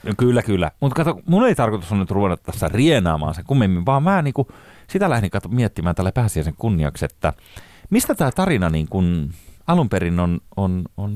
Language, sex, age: Finnish, male, 30-49